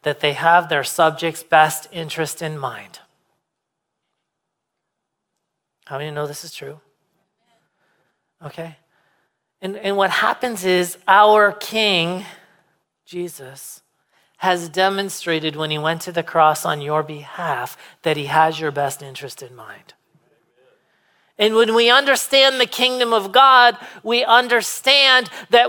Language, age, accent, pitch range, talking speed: English, 40-59, American, 155-240 Hz, 130 wpm